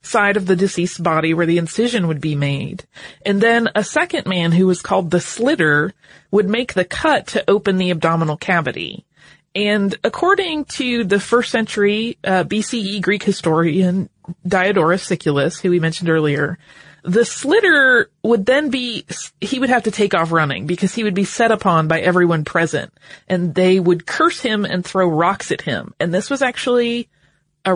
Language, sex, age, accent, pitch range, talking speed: English, female, 30-49, American, 165-220 Hz, 175 wpm